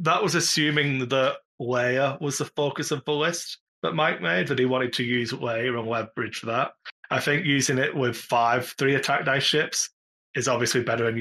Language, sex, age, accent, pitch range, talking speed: English, male, 20-39, British, 120-140 Hz, 205 wpm